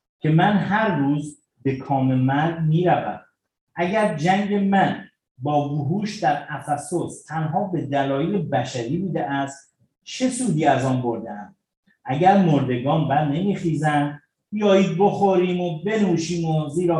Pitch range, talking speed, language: 140-185 Hz, 130 wpm, Persian